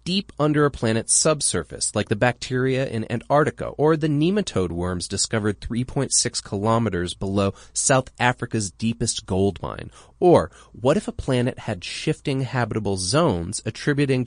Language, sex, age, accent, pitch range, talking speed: English, male, 30-49, American, 100-140 Hz, 140 wpm